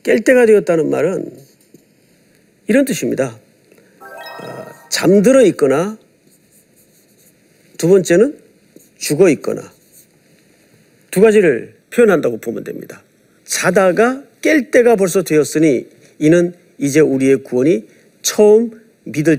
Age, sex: 50-69, male